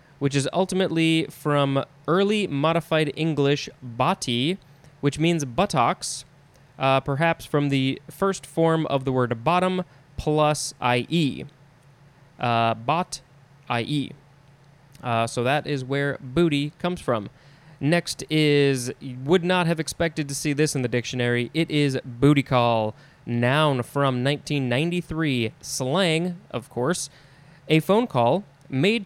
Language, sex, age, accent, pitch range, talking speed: English, male, 20-39, American, 135-160 Hz, 125 wpm